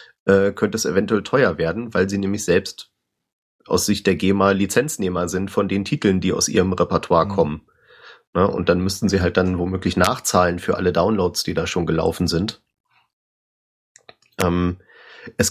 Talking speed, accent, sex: 155 wpm, German, male